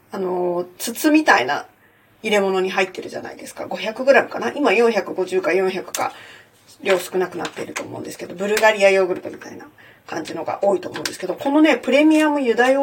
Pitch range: 195-310 Hz